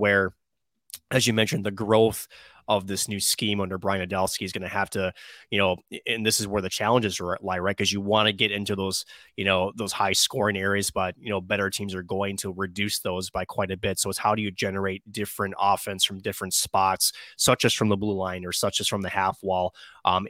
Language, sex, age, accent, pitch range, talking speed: English, male, 20-39, American, 95-110 Hz, 235 wpm